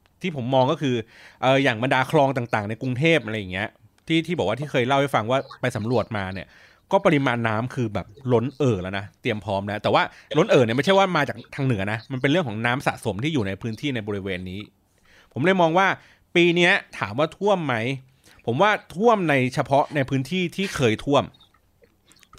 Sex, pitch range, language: male, 115-160 Hz, Thai